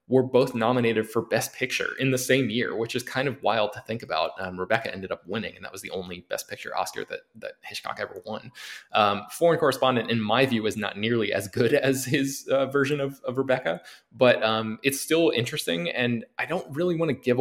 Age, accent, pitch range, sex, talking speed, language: 20-39, American, 105-135 Hz, male, 230 wpm, English